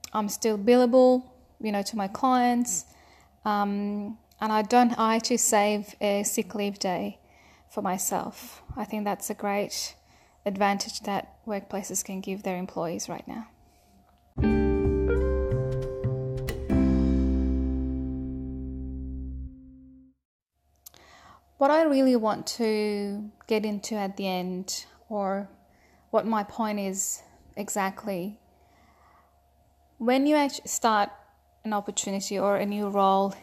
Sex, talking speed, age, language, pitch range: female, 110 wpm, 10-29, Persian, 190-225 Hz